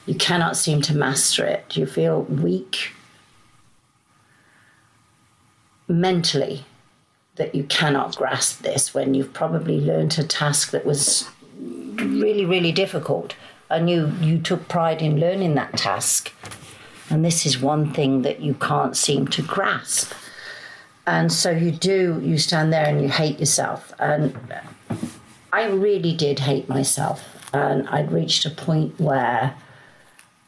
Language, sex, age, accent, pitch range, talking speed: English, female, 50-69, British, 145-185 Hz, 135 wpm